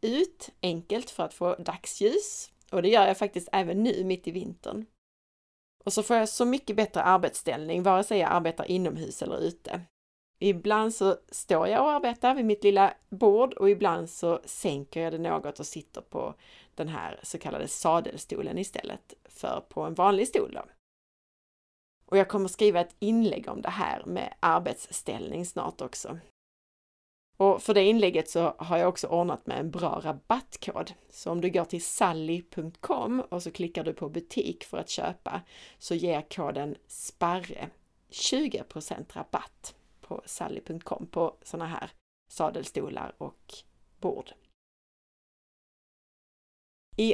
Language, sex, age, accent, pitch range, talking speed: Swedish, female, 30-49, native, 175-220 Hz, 150 wpm